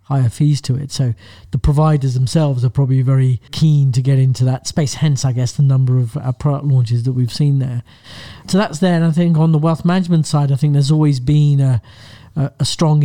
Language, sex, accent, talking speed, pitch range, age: English, male, British, 225 wpm, 130-150 Hz, 40-59